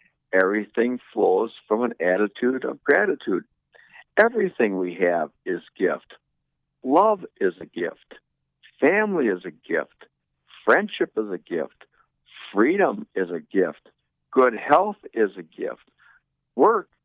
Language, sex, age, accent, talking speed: English, male, 60-79, American, 120 wpm